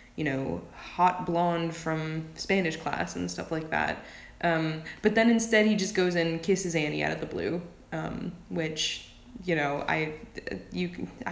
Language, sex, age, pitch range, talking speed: English, female, 20-39, 160-185 Hz, 160 wpm